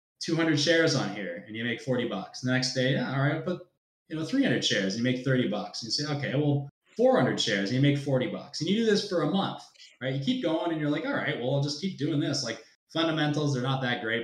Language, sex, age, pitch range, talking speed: English, male, 20-39, 125-150 Hz, 280 wpm